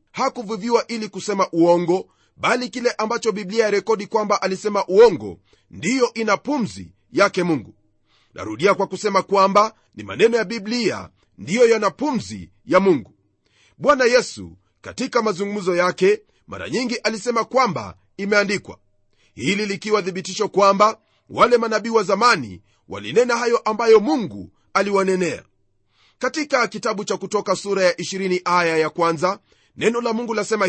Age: 40-59